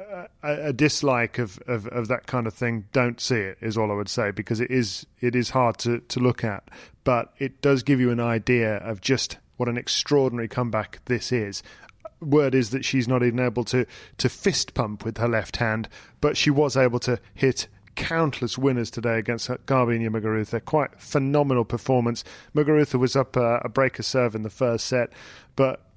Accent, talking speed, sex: British, 195 wpm, male